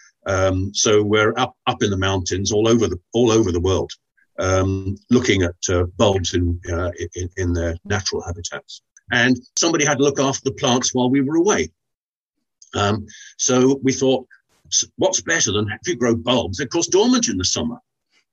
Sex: male